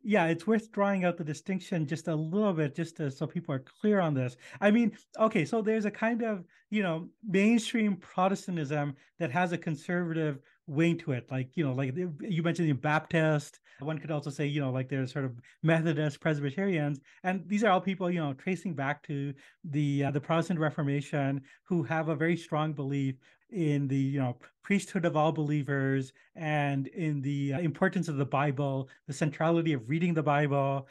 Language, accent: English, American